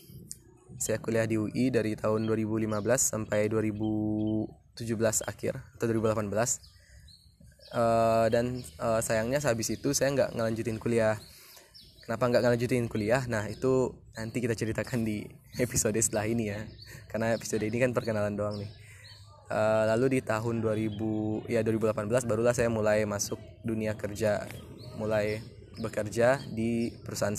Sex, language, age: male, Indonesian, 20-39